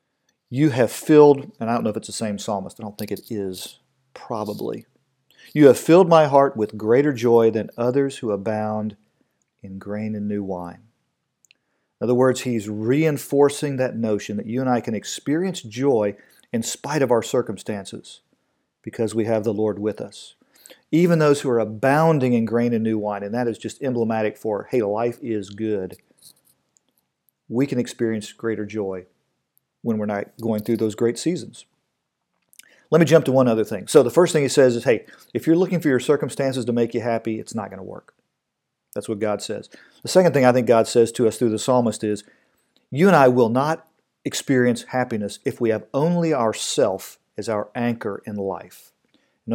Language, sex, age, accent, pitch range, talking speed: English, male, 40-59, American, 110-135 Hz, 195 wpm